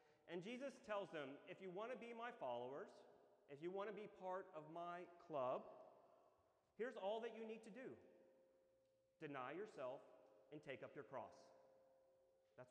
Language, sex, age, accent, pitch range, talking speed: English, male, 40-59, American, 145-195 Hz, 165 wpm